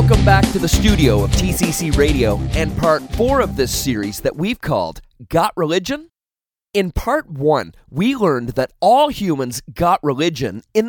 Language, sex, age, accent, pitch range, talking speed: English, male, 30-49, American, 155-235 Hz, 165 wpm